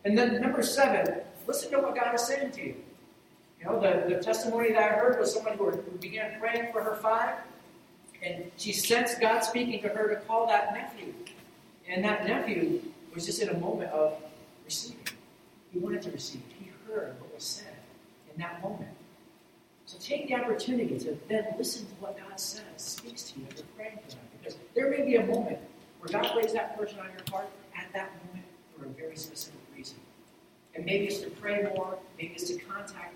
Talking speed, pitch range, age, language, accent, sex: 200 wpm, 175-235 Hz, 40-59, English, American, male